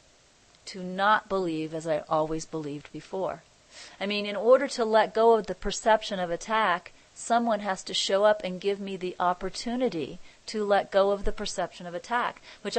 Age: 40-59